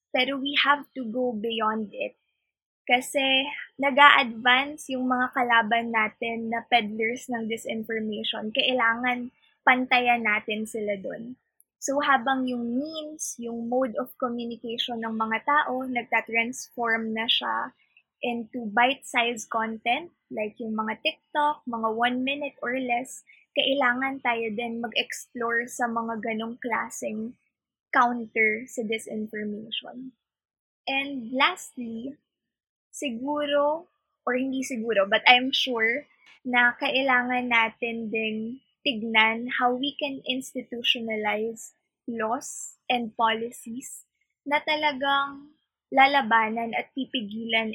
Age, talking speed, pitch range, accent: 20-39, 105 wpm, 225-270 Hz, native